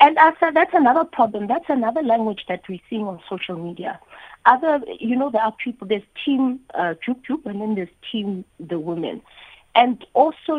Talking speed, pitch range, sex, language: 185 wpm, 170-225 Hz, female, English